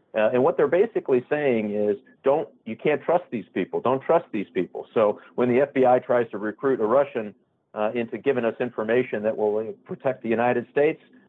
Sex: male